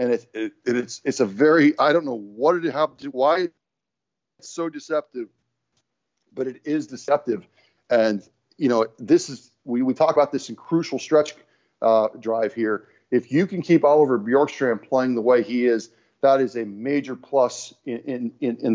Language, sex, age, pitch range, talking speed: English, male, 40-59, 120-155 Hz, 190 wpm